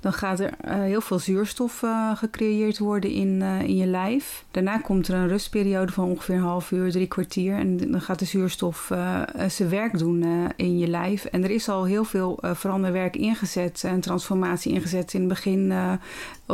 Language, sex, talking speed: Dutch, female, 210 wpm